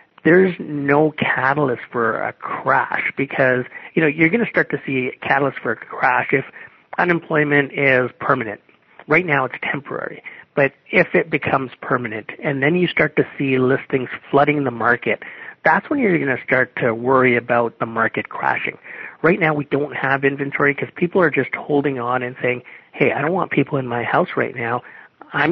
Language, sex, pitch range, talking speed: English, male, 130-155 Hz, 190 wpm